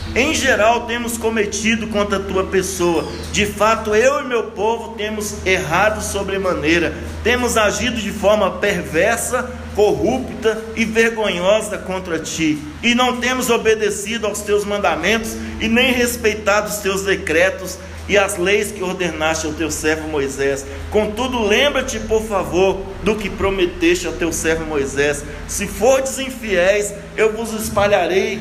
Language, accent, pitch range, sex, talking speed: Portuguese, Brazilian, 180-215 Hz, male, 140 wpm